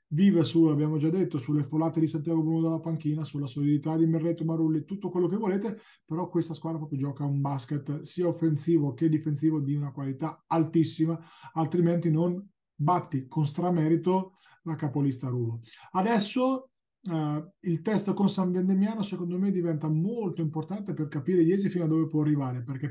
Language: Italian